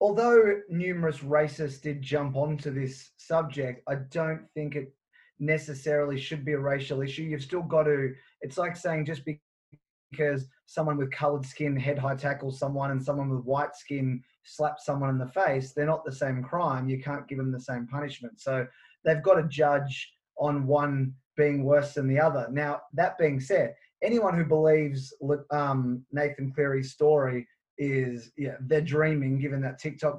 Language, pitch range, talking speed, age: English, 135-155 Hz, 170 wpm, 20-39